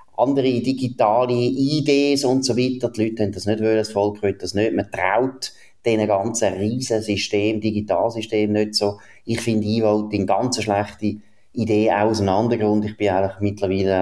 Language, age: German, 30-49